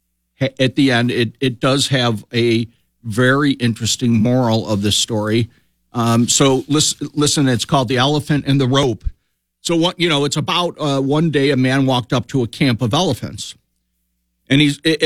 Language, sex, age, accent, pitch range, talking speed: English, male, 50-69, American, 105-140 Hz, 180 wpm